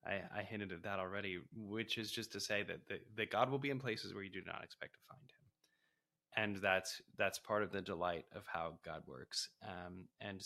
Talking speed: 230 wpm